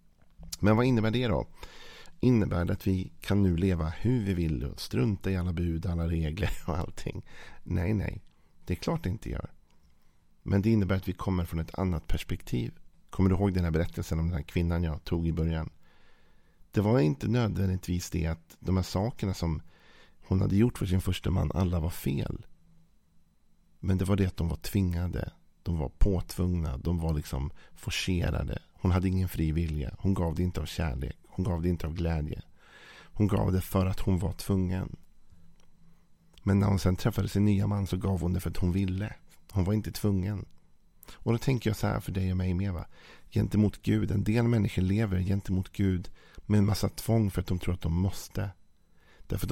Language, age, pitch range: Swedish, 50-69, 85-100 Hz